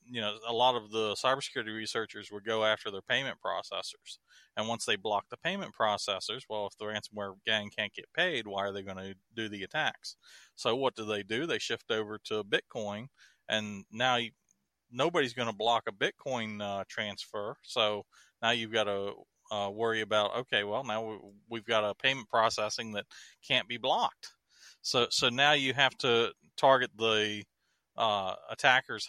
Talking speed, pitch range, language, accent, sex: 180 wpm, 105-125 Hz, English, American, male